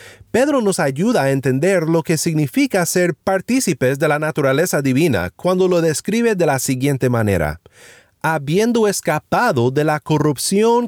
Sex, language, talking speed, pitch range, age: male, Spanish, 145 wpm, 140-195 Hz, 30-49